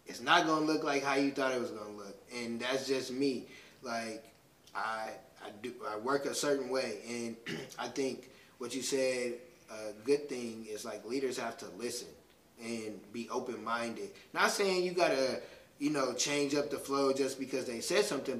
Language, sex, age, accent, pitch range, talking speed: English, male, 20-39, American, 125-175 Hz, 200 wpm